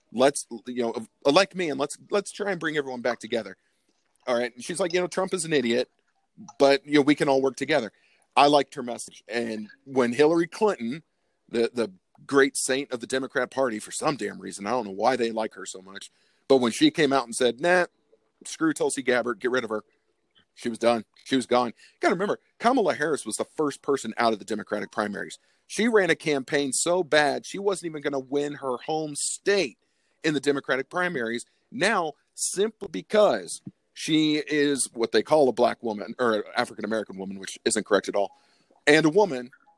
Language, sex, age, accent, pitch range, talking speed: English, male, 40-59, American, 125-155 Hz, 210 wpm